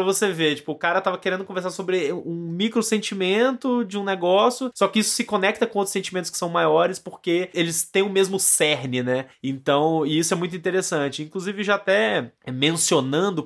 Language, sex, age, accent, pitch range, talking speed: Portuguese, male, 20-39, Brazilian, 135-185 Hz, 190 wpm